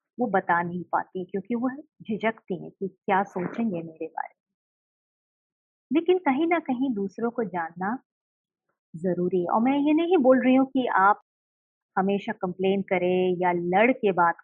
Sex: female